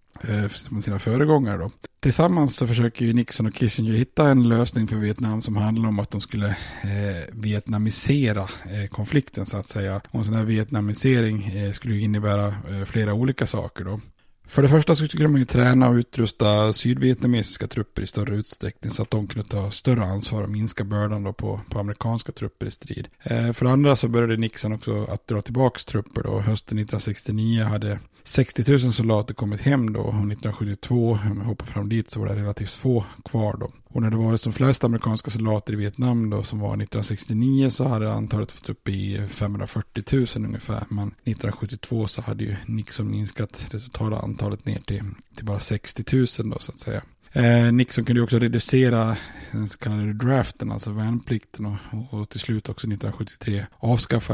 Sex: male